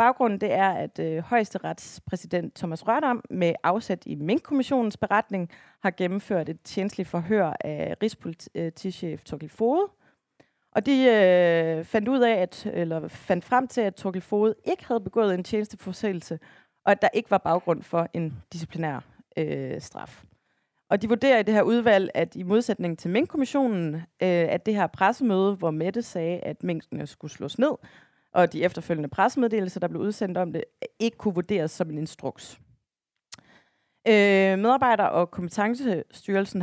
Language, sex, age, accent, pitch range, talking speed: Danish, female, 30-49, native, 165-220 Hz, 155 wpm